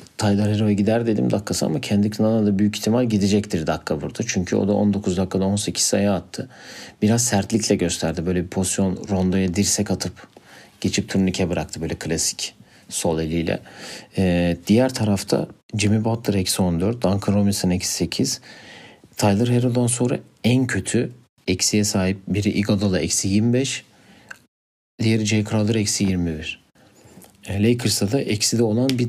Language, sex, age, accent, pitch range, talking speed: Turkish, male, 40-59, native, 95-110 Hz, 140 wpm